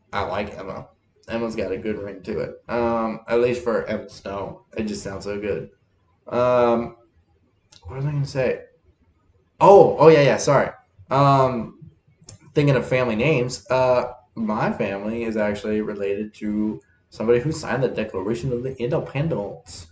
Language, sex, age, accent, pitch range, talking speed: English, male, 20-39, American, 105-145 Hz, 160 wpm